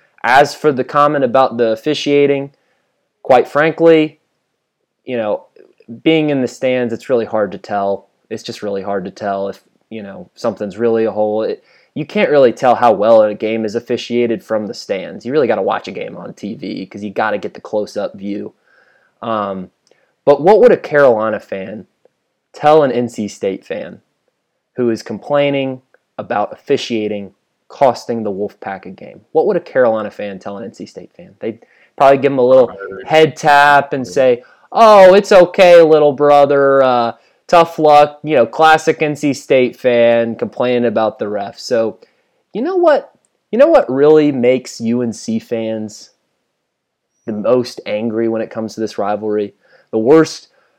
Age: 20-39